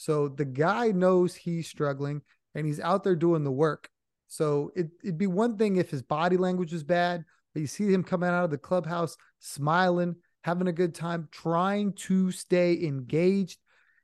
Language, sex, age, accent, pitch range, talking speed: English, male, 30-49, American, 155-185 Hz, 185 wpm